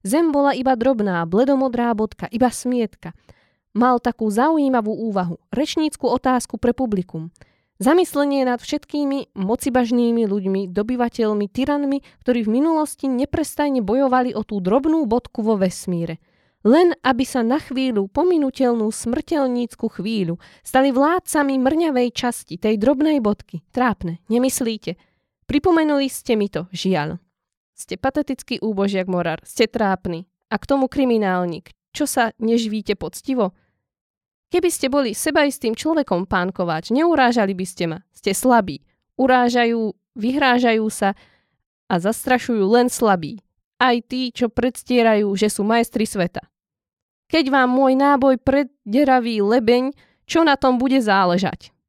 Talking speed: 125 wpm